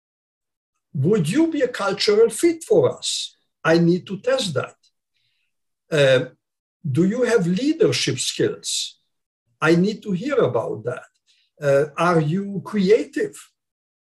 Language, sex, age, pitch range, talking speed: English, male, 60-79, 160-210 Hz, 125 wpm